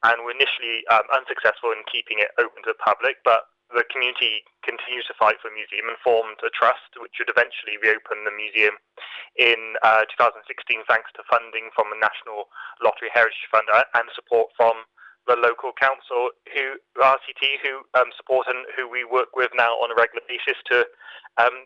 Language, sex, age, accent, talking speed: English, male, 20-39, British, 185 wpm